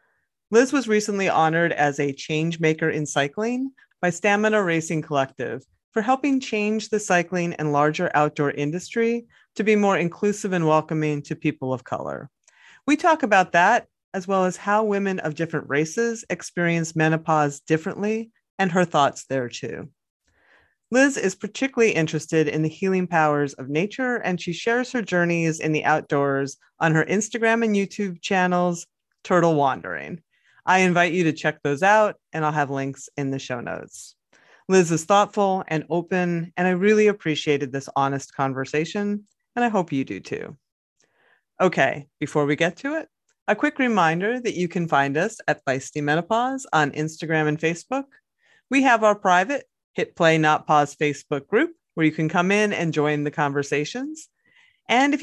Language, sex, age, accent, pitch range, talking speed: English, female, 30-49, American, 155-215 Hz, 165 wpm